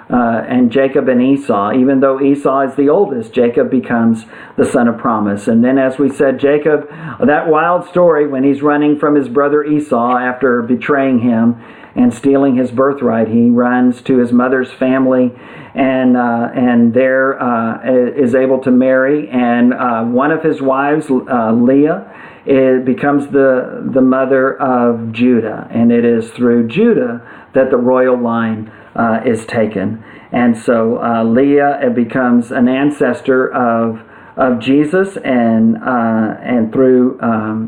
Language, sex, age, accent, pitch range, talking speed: English, male, 50-69, American, 120-135 Hz, 155 wpm